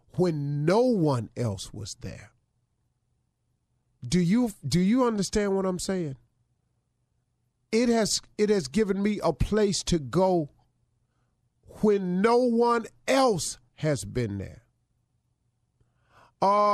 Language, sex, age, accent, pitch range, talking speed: English, male, 40-59, American, 120-160 Hz, 110 wpm